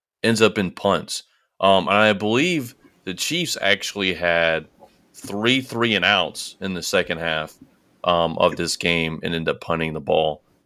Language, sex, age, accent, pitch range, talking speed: English, male, 30-49, American, 90-100 Hz, 170 wpm